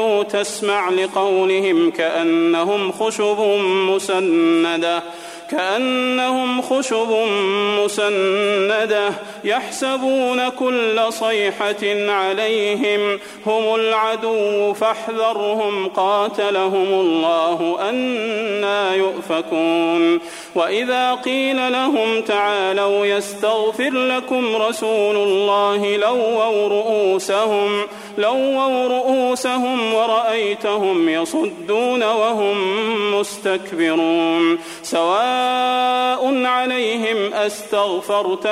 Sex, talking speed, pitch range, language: male, 60 wpm, 200-225 Hz, Arabic